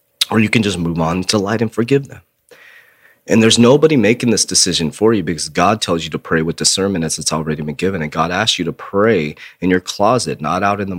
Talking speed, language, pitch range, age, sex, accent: 245 wpm, English, 80-110 Hz, 30-49, male, American